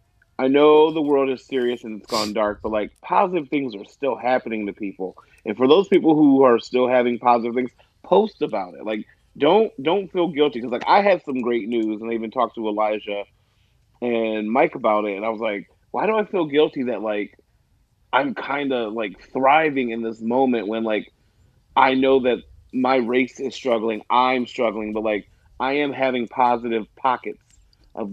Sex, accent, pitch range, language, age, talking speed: male, American, 110-135 Hz, English, 30-49, 195 wpm